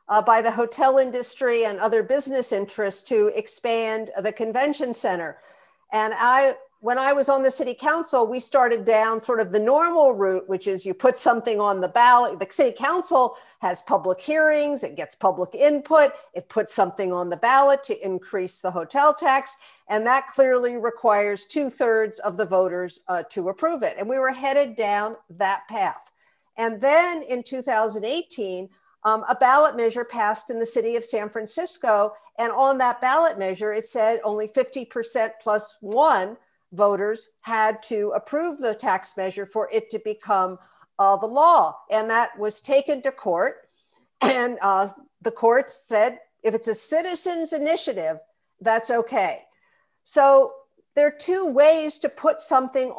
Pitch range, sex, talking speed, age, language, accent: 210-270 Hz, female, 165 wpm, 50-69, English, American